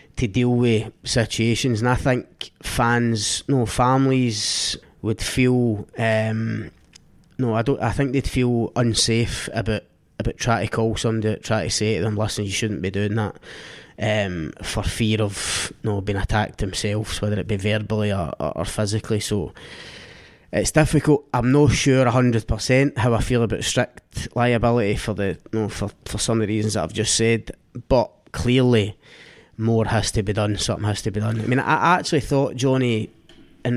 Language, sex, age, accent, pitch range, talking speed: English, male, 20-39, British, 105-125 Hz, 180 wpm